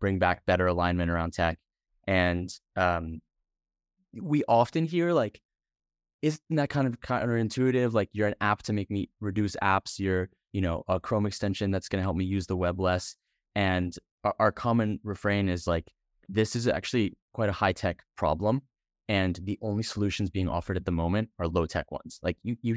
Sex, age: male, 20-39